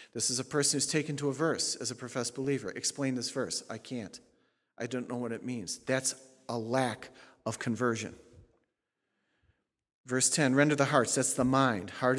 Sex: male